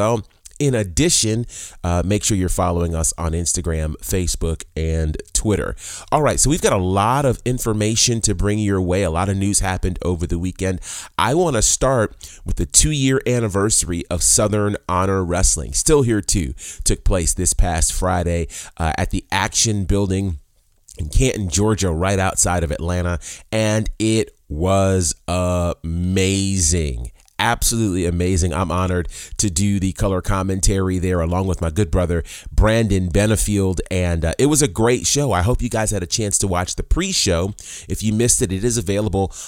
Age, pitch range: 30-49, 85-110 Hz